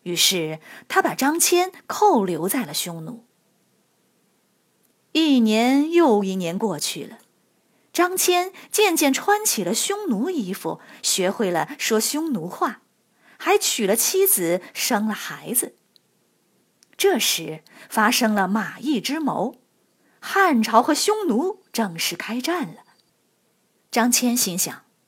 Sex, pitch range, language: female, 195-320 Hz, Chinese